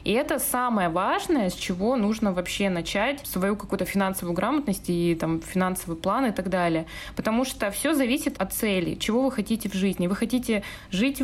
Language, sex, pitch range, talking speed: Russian, female, 190-250 Hz, 180 wpm